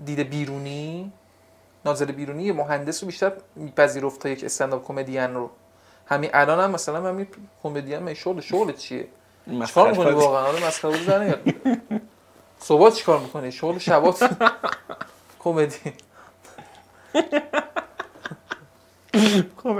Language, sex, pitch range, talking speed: Persian, male, 130-205 Hz, 125 wpm